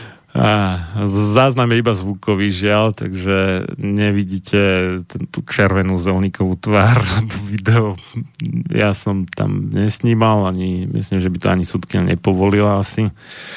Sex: male